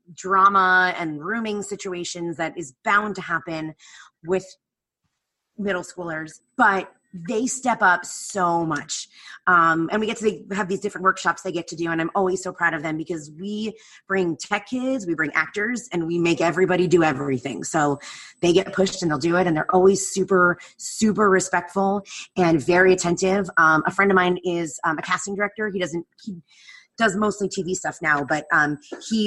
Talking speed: 180 wpm